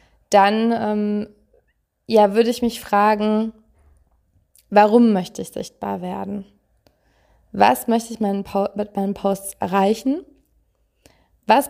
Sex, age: female, 20-39